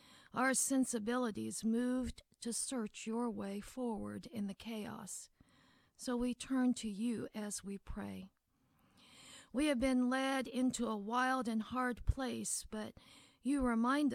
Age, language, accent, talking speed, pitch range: 50-69, English, American, 135 wpm, 220-255 Hz